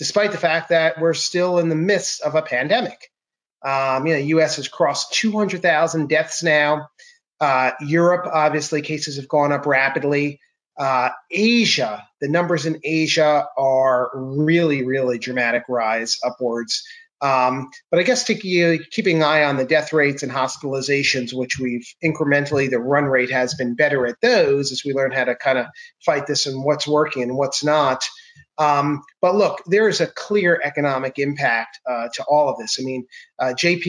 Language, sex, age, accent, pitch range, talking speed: English, male, 30-49, American, 130-160 Hz, 180 wpm